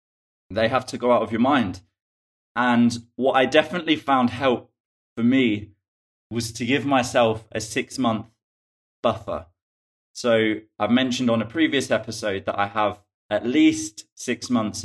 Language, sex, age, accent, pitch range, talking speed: English, male, 20-39, British, 105-130 Hz, 150 wpm